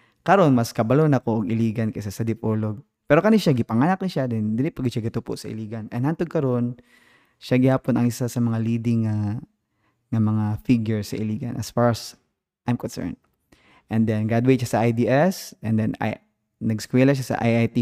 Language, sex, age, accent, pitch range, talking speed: English, male, 20-39, Filipino, 110-130 Hz, 180 wpm